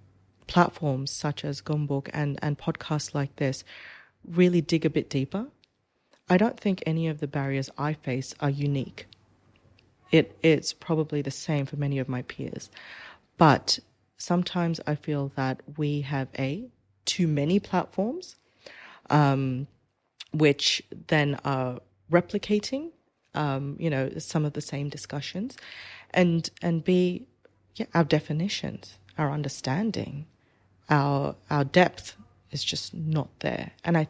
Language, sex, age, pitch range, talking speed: English, female, 30-49, 135-165 Hz, 135 wpm